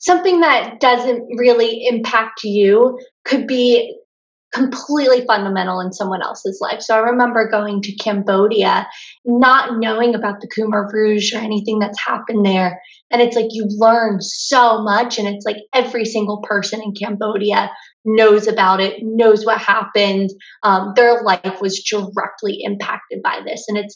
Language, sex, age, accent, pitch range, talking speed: English, female, 20-39, American, 195-225 Hz, 155 wpm